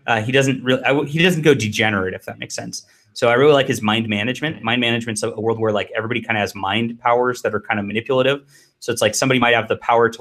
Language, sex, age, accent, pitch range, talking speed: English, male, 20-39, American, 105-120 Hz, 275 wpm